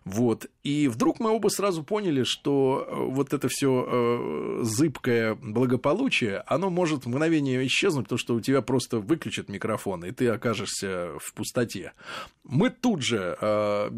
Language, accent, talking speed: Russian, native, 145 wpm